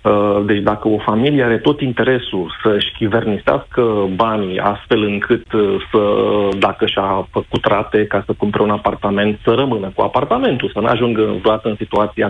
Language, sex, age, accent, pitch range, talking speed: Romanian, male, 40-59, native, 105-170 Hz, 150 wpm